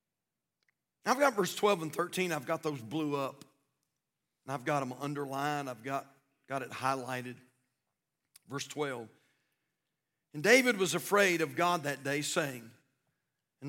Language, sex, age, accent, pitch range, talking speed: English, male, 50-69, American, 135-170 Hz, 145 wpm